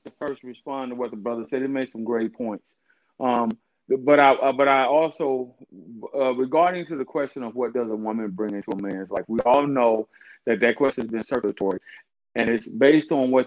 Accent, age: American, 40-59